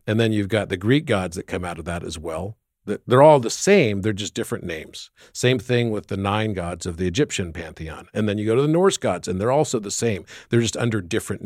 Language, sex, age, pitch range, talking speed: English, male, 50-69, 95-130 Hz, 255 wpm